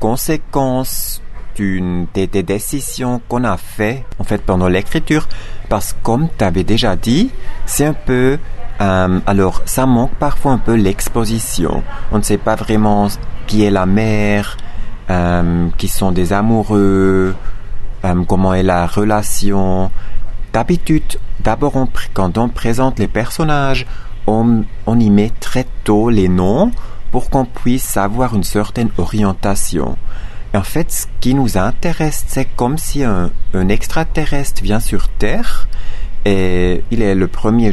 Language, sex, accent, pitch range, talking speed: English, male, French, 100-120 Hz, 145 wpm